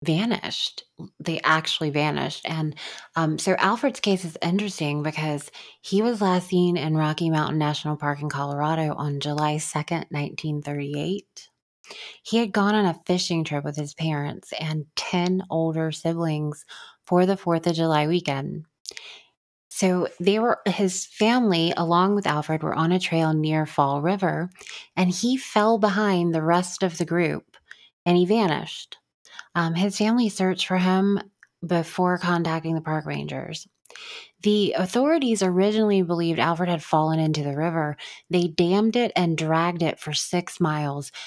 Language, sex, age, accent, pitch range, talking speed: English, female, 20-39, American, 155-195 Hz, 150 wpm